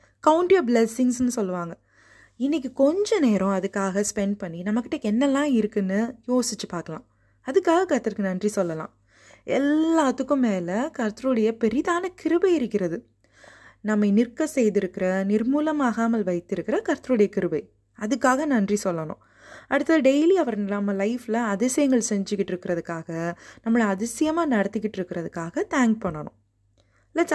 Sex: female